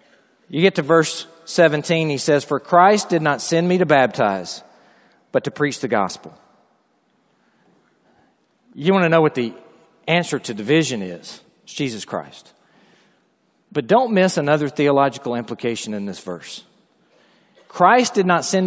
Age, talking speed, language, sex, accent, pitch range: 40-59, 150 wpm, English, male, American, 160-215 Hz